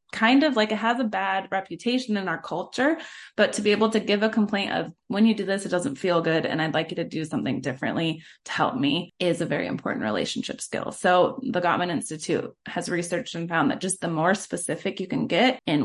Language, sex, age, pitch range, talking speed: English, female, 20-39, 165-215 Hz, 235 wpm